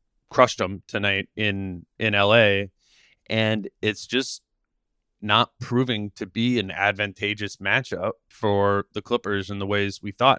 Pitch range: 100-110 Hz